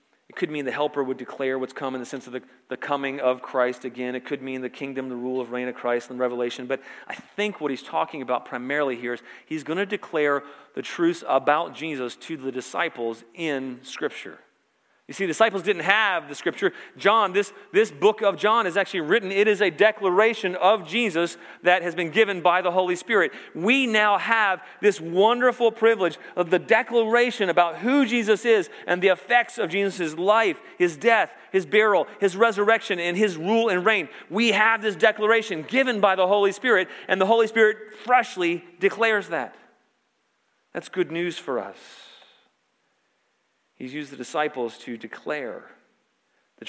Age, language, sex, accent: 40-59, English, male, American